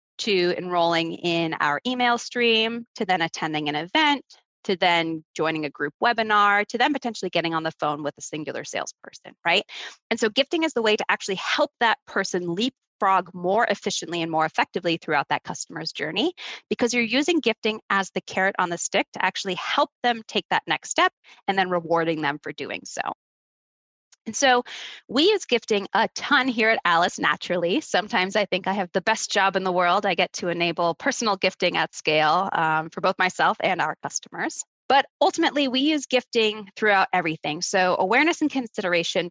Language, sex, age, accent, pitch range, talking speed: English, female, 20-39, American, 170-240 Hz, 190 wpm